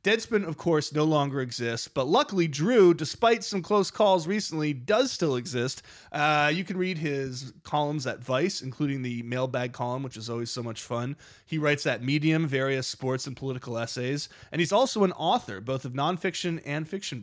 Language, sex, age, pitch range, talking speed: English, male, 30-49, 120-150 Hz, 190 wpm